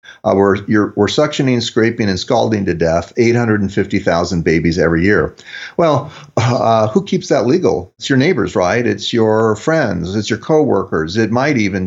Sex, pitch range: male, 95-130 Hz